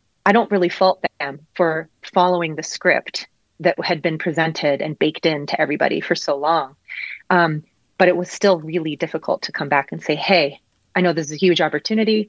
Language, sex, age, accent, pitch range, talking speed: English, female, 30-49, American, 155-185 Hz, 200 wpm